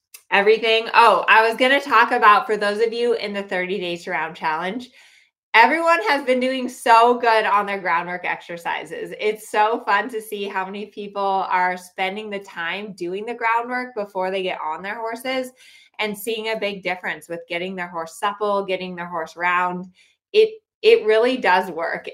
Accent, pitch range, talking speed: American, 175-220 Hz, 185 wpm